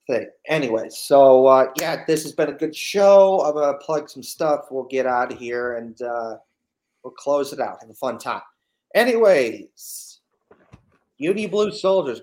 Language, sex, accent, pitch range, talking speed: English, male, American, 135-175 Hz, 175 wpm